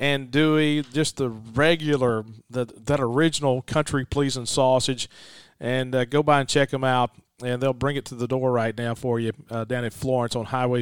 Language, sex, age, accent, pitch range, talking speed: English, male, 40-59, American, 120-150 Hz, 190 wpm